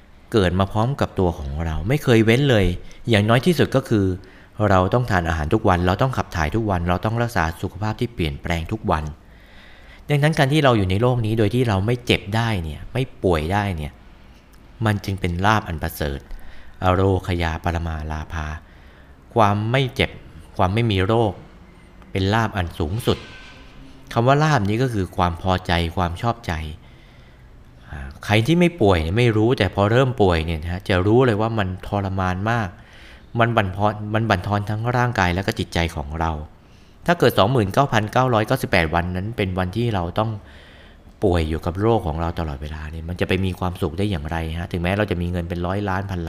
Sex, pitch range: male, 85-110 Hz